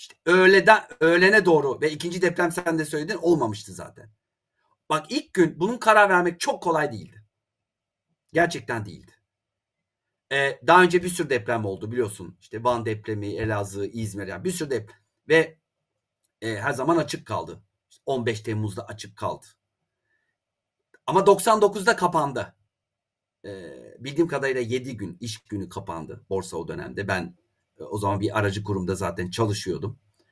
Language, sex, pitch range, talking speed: Turkish, male, 105-165 Hz, 145 wpm